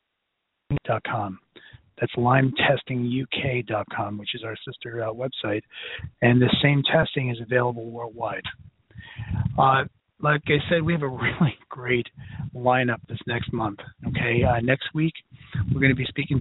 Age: 40-59